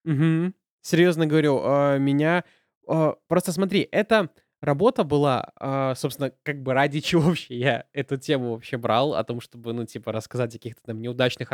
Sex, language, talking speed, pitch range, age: male, Russian, 155 wpm, 130-165 Hz, 20-39